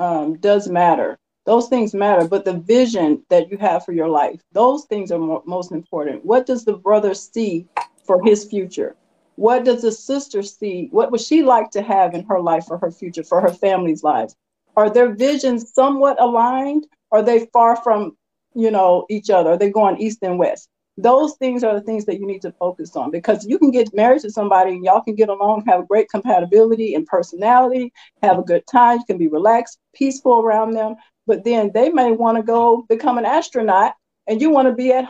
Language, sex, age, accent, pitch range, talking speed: English, female, 50-69, American, 185-245 Hz, 215 wpm